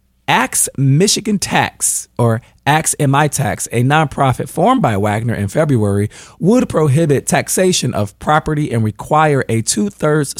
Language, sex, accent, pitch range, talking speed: English, male, American, 115-155 Hz, 140 wpm